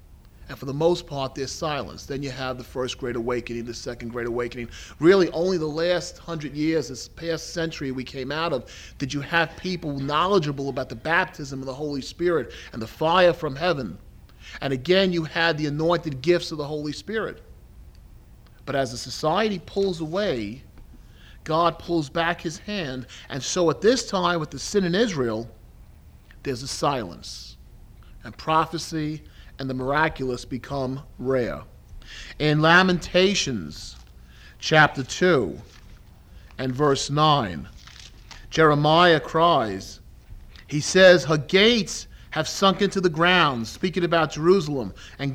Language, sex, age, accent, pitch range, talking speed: English, male, 40-59, American, 130-175 Hz, 150 wpm